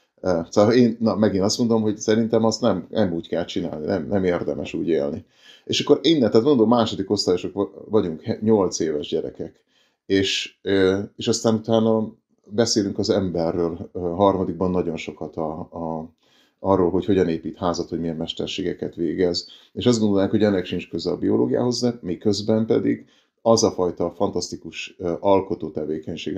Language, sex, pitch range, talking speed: Hungarian, male, 90-110 Hz, 155 wpm